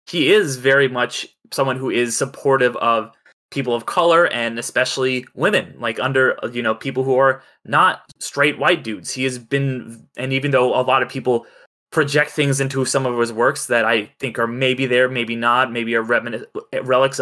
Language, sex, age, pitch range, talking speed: English, male, 20-39, 120-145 Hz, 190 wpm